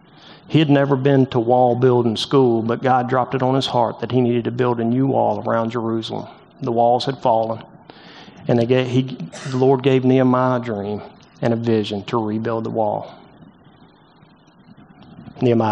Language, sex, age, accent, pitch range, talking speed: English, male, 40-59, American, 120-145 Hz, 170 wpm